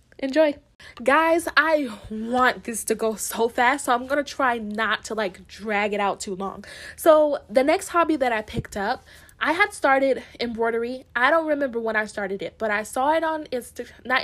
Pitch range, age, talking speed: 215-285 Hz, 10-29, 195 wpm